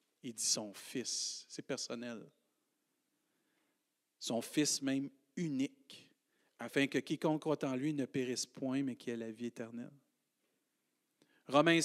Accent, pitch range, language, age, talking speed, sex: Canadian, 140-185 Hz, French, 40-59, 130 wpm, male